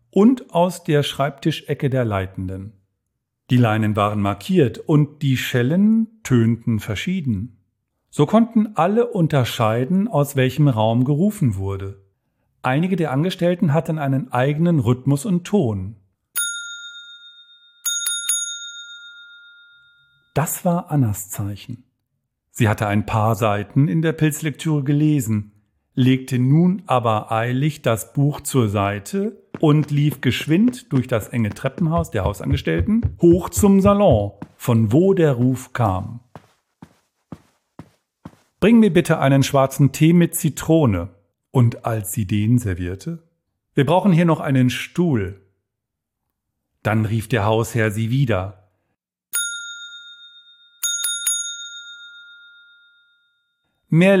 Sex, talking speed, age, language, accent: male, 105 wpm, 40-59, German, German